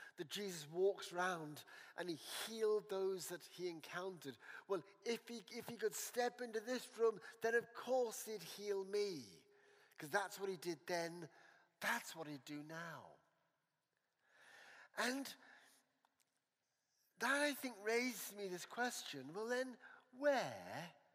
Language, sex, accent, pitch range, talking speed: English, male, British, 170-255 Hz, 135 wpm